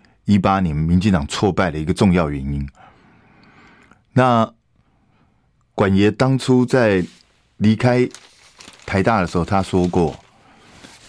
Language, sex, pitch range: Chinese, male, 85-110 Hz